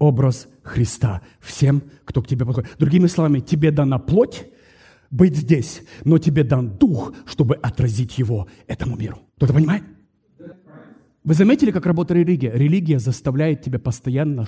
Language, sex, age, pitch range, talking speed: English, male, 40-59, 140-235 Hz, 140 wpm